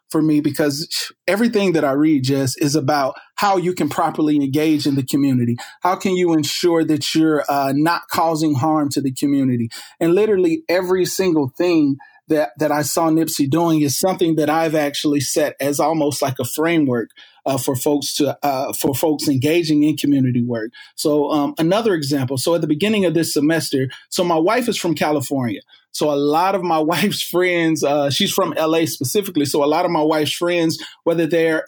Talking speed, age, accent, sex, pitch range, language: 195 wpm, 30-49, American, male, 145-175 Hz, English